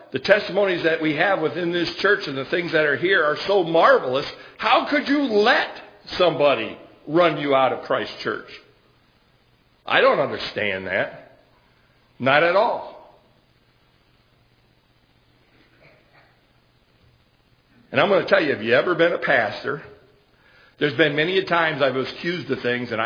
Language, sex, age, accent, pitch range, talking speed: English, male, 60-79, American, 125-160 Hz, 150 wpm